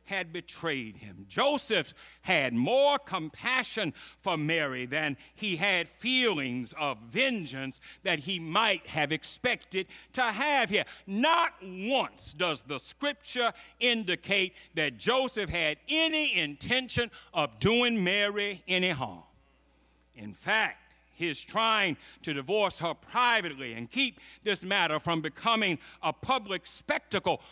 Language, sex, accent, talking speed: English, male, American, 120 wpm